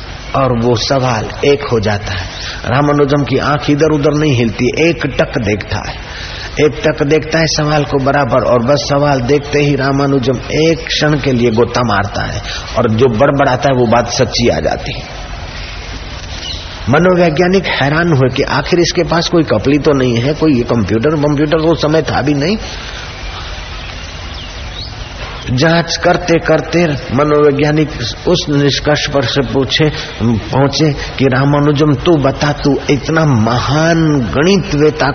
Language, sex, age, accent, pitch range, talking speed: Hindi, male, 50-69, native, 115-150 Hz, 145 wpm